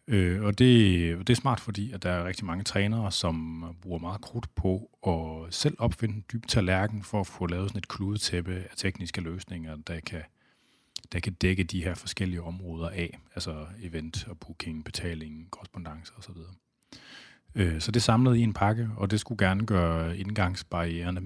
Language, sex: Danish, male